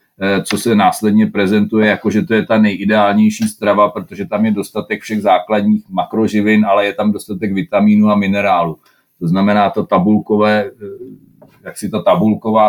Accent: native